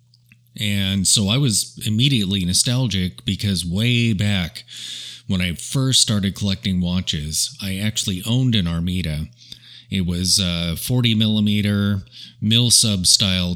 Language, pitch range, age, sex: English, 90-115 Hz, 30-49, male